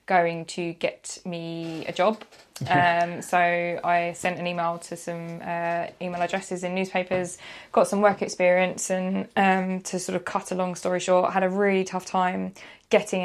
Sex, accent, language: female, British, English